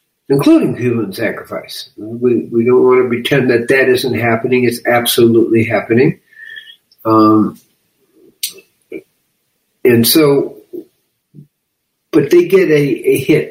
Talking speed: 110 wpm